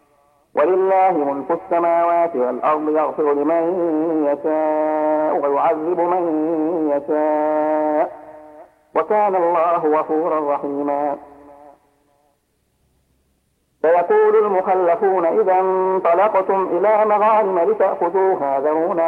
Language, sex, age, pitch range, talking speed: Arabic, male, 50-69, 155-190 Hz, 70 wpm